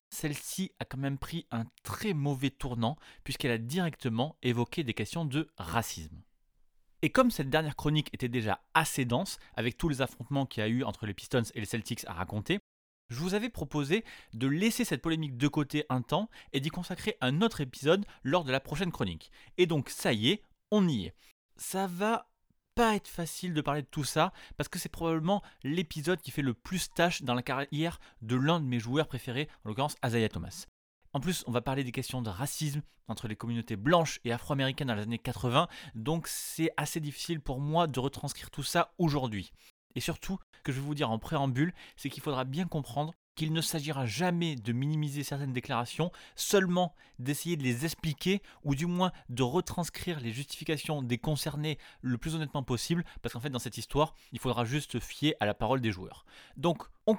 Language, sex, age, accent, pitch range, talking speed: French, male, 30-49, French, 125-165 Hz, 205 wpm